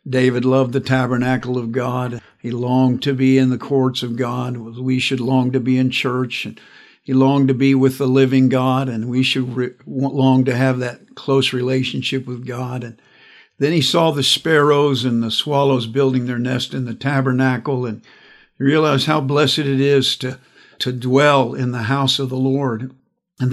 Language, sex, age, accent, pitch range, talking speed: English, male, 50-69, American, 125-145 Hz, 185 wpm